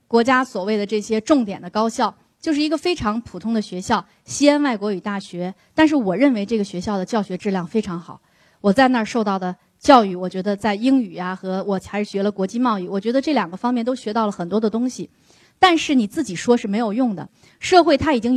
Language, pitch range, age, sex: Chinese, 205-270 Hz, 20-39, female